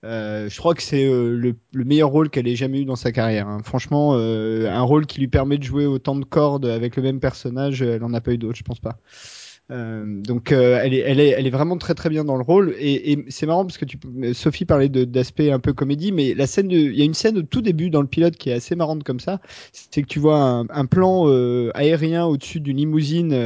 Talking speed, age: 265 wpm, 30-49